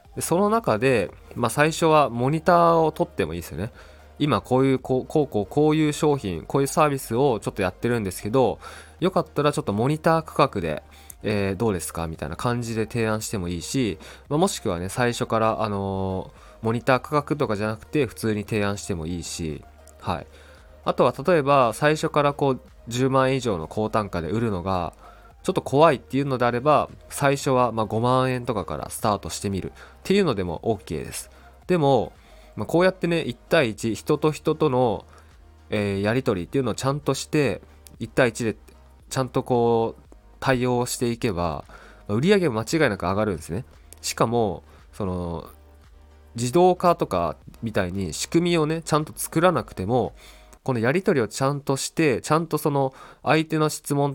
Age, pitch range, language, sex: 20-39, 95-145 Hz, Japanese, male